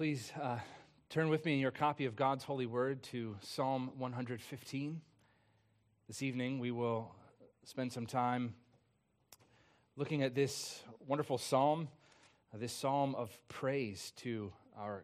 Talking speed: 135 wpm